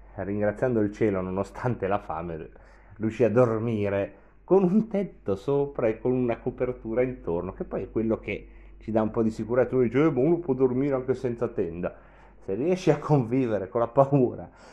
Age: 30-49